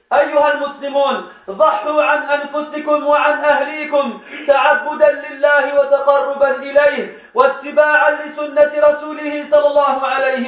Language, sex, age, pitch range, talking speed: French, male, 40-59, 285-305 Hz, 95 wpm